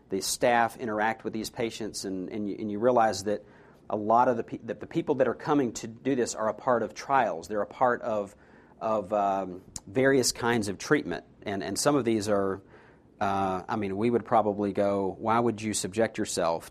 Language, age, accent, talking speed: English, 40-59, American, 215 wpm